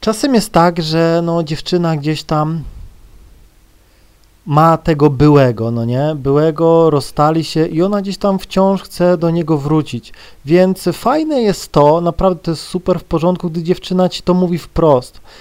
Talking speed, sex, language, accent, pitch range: 155 wpm, male, Polish, native, 135-175 Hz